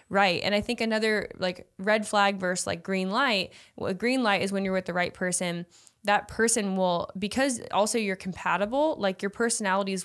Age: 20-39